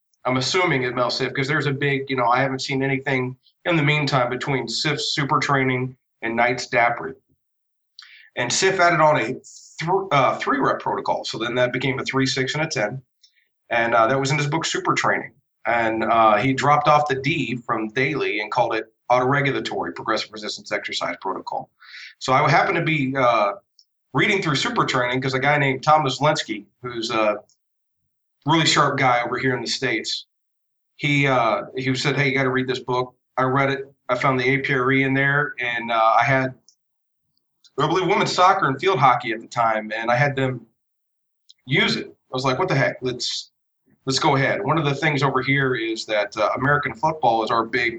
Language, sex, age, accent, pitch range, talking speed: English, male, 30-49, American, 125-145 Hz, 200 wpm